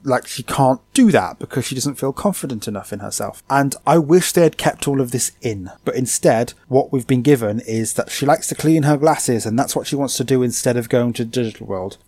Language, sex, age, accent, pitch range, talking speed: English, male, 20-39, British, 120-155 Hz, 250 wpm